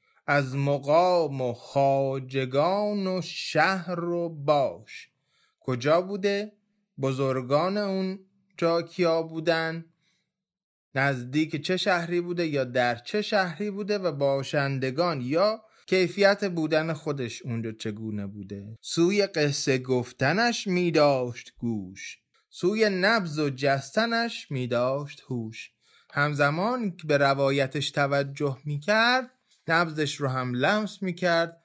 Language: Persian